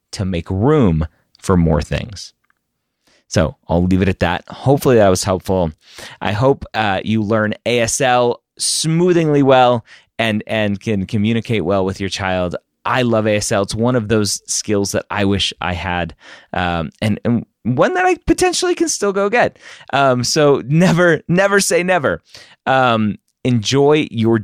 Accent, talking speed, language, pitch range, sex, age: American, 160 wpm, English, 90-120 Hz, male, 30-49